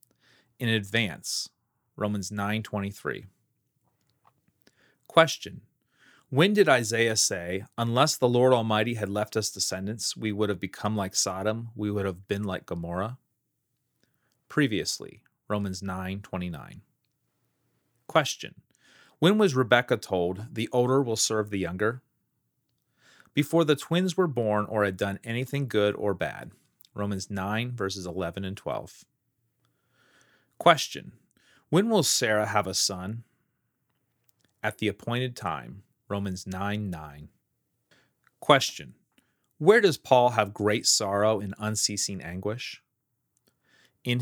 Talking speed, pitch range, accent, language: 120 wpm, 100-125 Hz, American, English